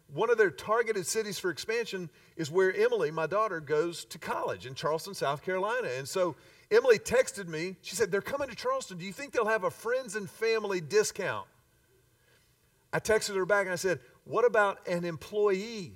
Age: 50-69